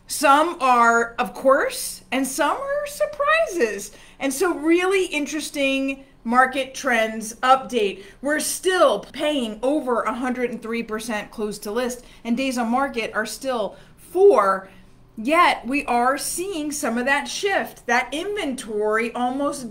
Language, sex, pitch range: English, female, 225-305 Hz